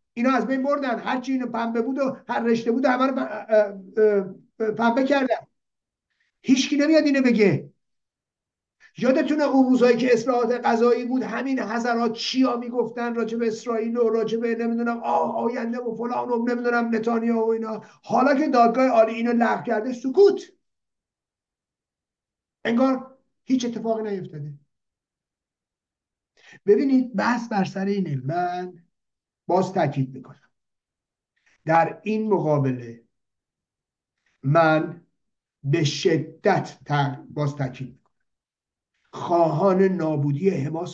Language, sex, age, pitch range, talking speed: Persian, male, 50-69, 170-245 Hz, 115 wpm